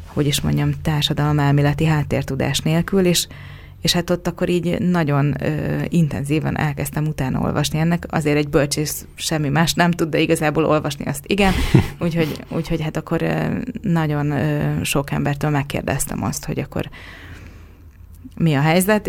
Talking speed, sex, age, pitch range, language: 150 wpm, female, 30-49, 145-165 Hz, Hungarian